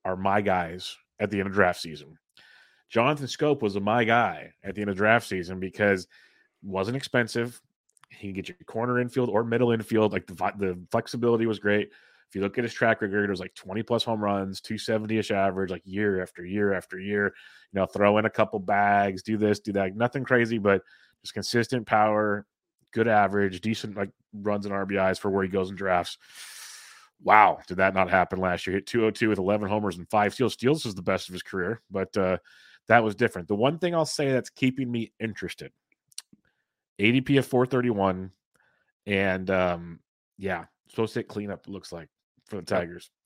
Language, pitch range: English, 95-120 Hz